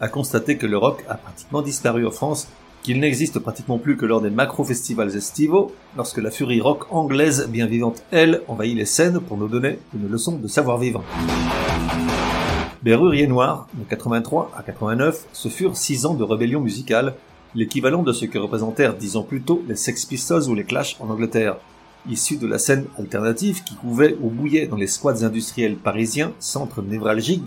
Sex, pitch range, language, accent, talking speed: male, 110-145 Hz, French, French, 185 wpm